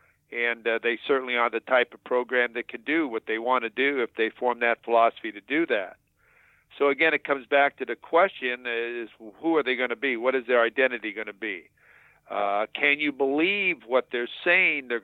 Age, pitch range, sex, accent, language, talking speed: 50-69, 120-150 Hz, male, American, English, 220 wpm